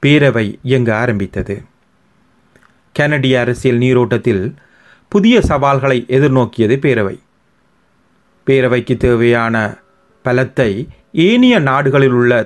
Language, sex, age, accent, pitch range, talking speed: Tamil, male, 40-59, native, 120-150 Hz, 75 wpm